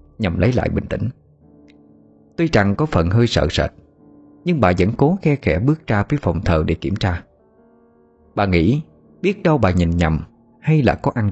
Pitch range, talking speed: 85-130 Hz, 195 wpm